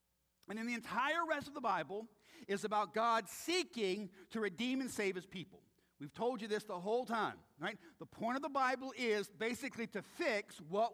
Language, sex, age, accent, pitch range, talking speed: English, male, 50-69, American, 200-265 Hz, 195 wpm